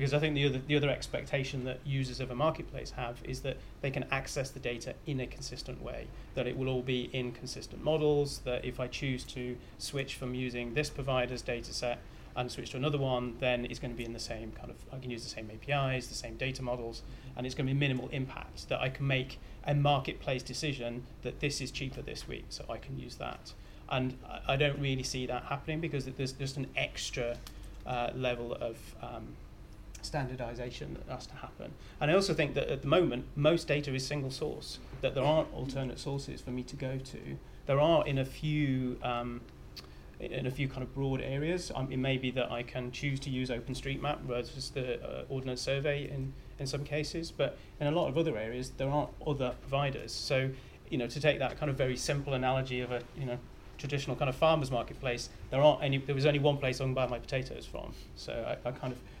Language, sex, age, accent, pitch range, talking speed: English, male, 30-49, British, 125-140 Hz, 225 wpm